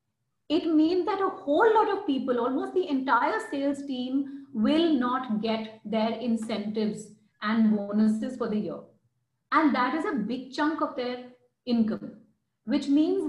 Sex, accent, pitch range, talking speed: female, Indian, 220-285 Hz, 155 wpm